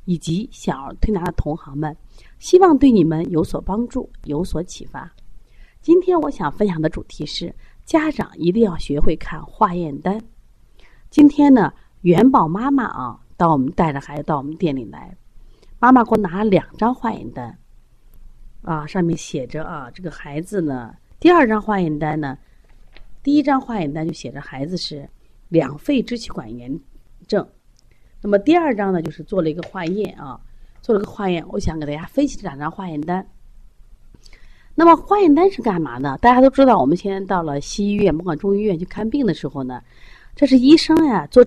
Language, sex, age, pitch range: Chinese, female, 30-49, 155-240 Hz